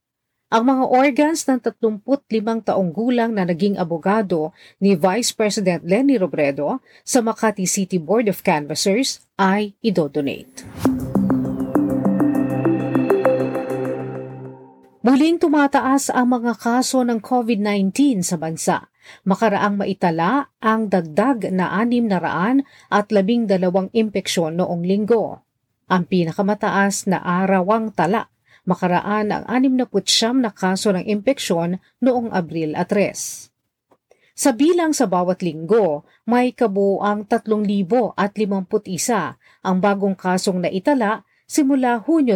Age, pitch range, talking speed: 40-59, 175-235 Hz, 115 wpm